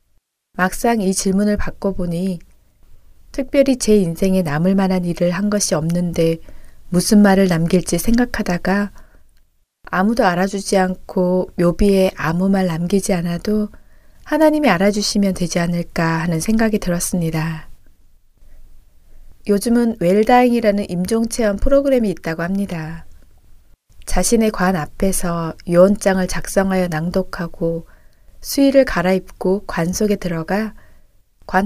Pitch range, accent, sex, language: 175-215 Hz, native, female, Korean